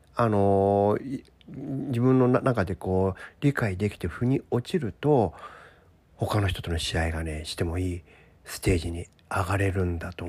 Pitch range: 90-135 Hz